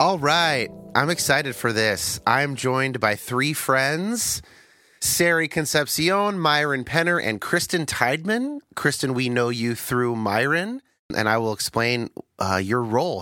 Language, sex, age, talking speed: English, male, 30-49, 140 wpm